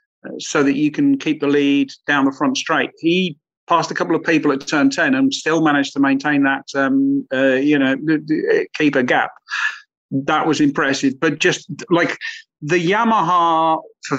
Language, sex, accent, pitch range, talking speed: English, male, British, 140-175 Hz, 180 wpm